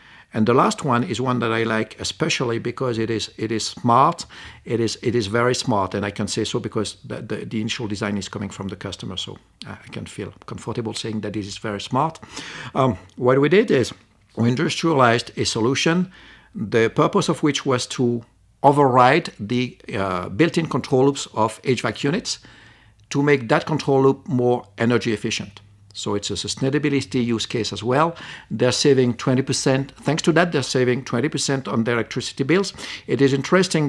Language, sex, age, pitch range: English, male, 50-69, 110-135 Hz